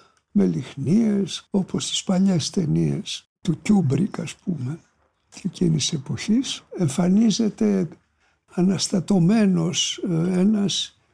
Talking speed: 85 wpm